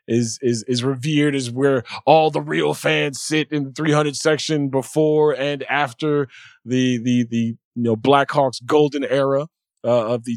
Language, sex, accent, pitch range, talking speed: English, male, American, 130-170 Hz, 175 wpm